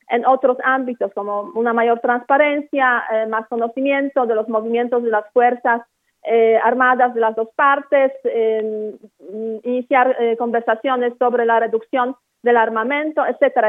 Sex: female